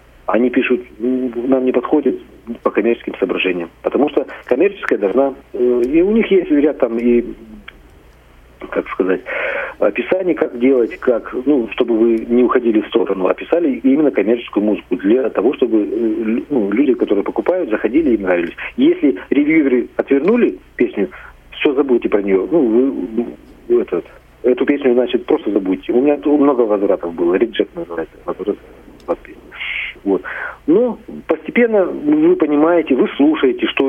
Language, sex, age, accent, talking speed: Russian, male, 40-59, native, 140 wpm